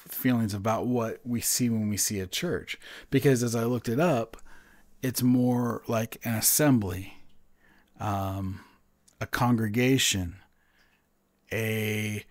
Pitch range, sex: 85-125 Hz, male